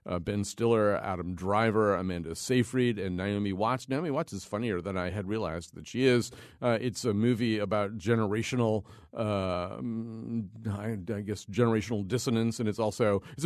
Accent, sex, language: American, male, English